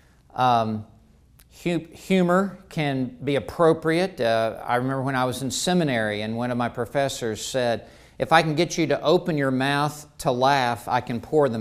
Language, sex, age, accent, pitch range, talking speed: English, male, 50-69, American, 115-150 Hz, 175 wpm